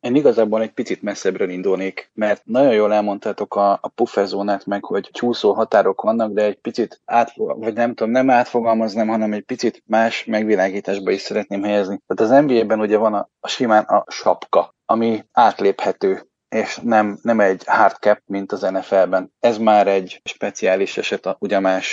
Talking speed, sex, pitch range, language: 170 wpm, male, 105-125 Hz, Hungarian